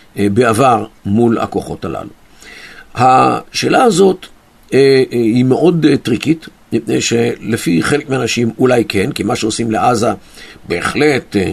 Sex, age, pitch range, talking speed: male, 50-69, 110-160 Hz, 105 wpm